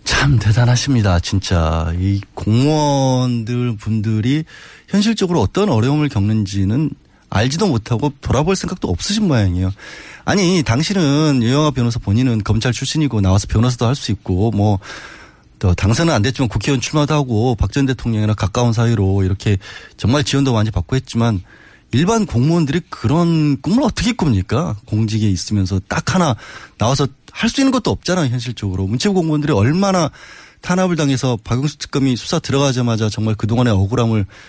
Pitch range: 105-150 Hz